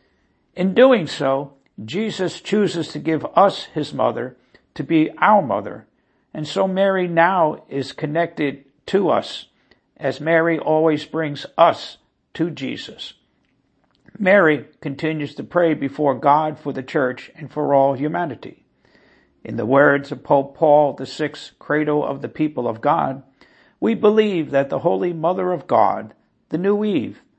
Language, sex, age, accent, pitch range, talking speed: English, male, 60-79, American, 140-180 Hz, 145 wpm